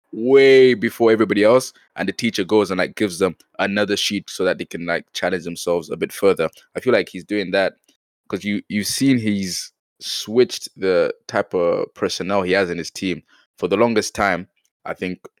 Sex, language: male, English